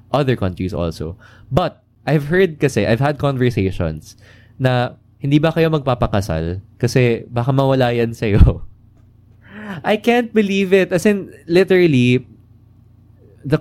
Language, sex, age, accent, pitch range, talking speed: Filipino, male, 20-39, native, 105-150 Hz, 130 wpm